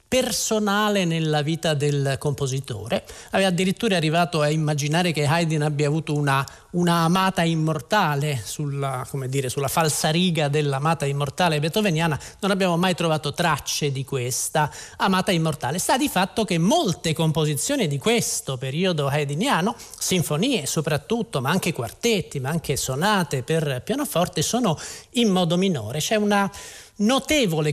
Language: Italian